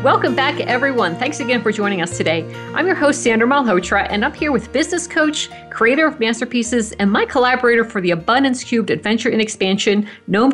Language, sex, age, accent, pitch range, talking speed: English, female, 50-69, American, 195-250 Hz, 195 wpm